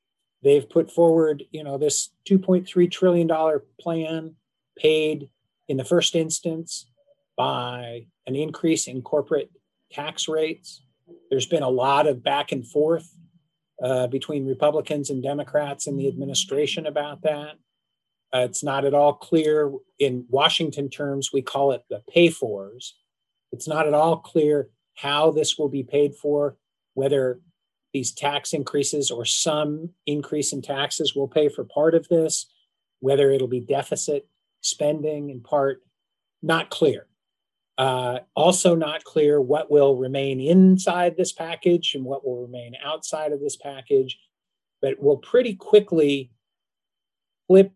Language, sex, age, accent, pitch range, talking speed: English, male, 50-69, American, 135-165 Hz, 140 wpm